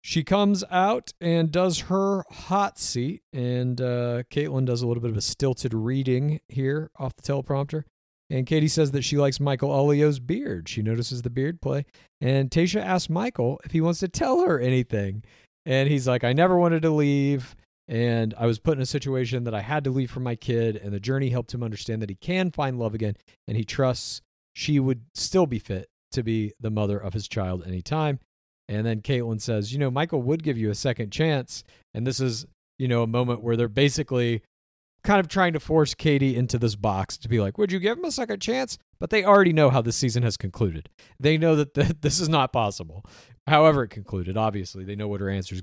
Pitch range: 105-150 Hz